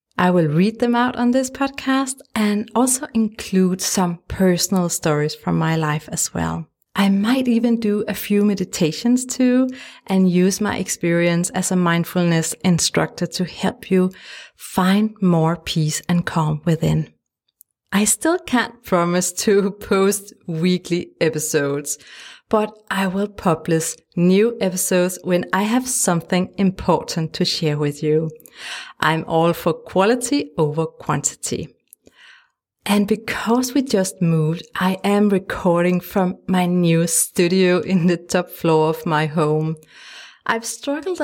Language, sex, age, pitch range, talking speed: English, female, 30-49, 165-215 Hz, 135 wpm